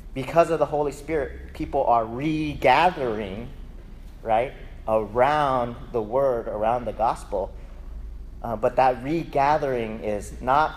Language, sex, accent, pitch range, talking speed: English, male, American, 110-150 Hz, 115 wpm